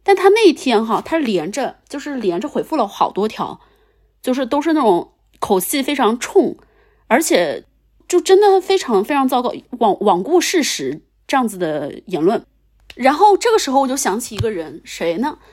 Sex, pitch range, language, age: female, 210-280 Hz, Chinese, 20-39